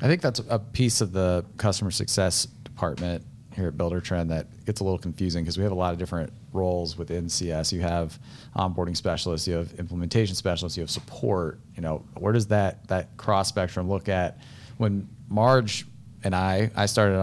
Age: 30-49